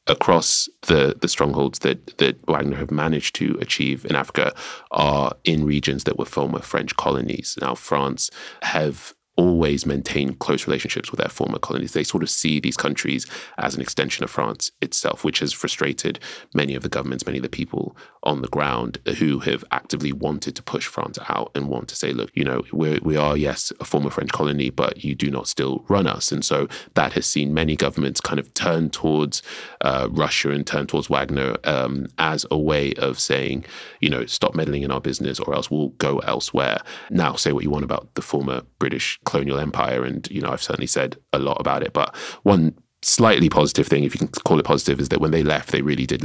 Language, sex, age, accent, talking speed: English, male, 30-49, British, 210 wpm